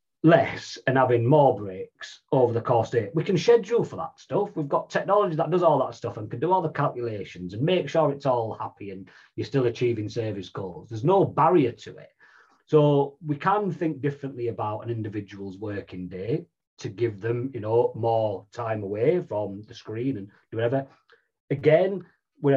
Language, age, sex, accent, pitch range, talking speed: English, 40-59, male, British, 105-145 Hz, 190 wpm